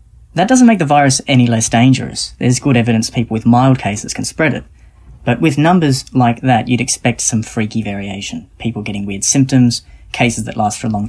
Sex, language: female, English